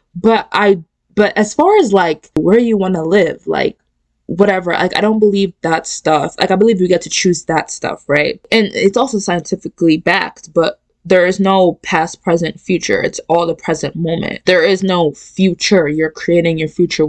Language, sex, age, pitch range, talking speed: English, female, 20-39, 165-200 Hz, 195 wpm